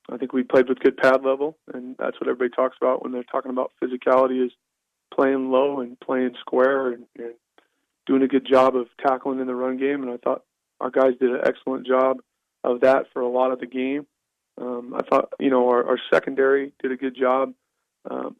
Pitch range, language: 125-135 Hz, English